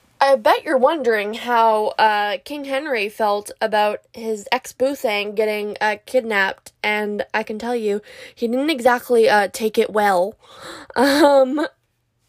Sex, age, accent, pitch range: female, 20-39, American, 210-245 Hz